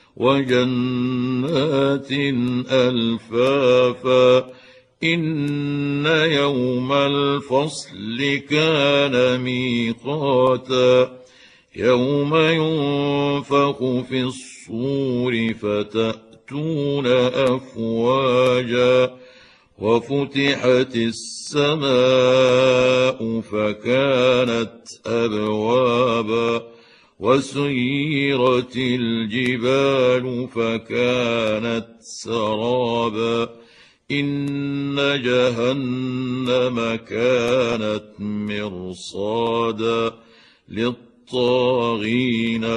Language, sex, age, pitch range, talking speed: Arabic, male, 60-79, 115-135 Hz, 35 wpm